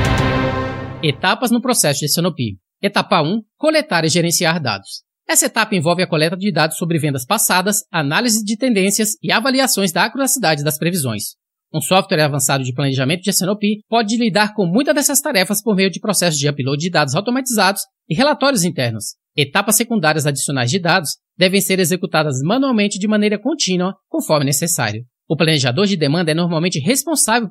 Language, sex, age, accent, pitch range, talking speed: Portuguese, male, 20-39, Brazilian, 155-220 Hz, 165 wpm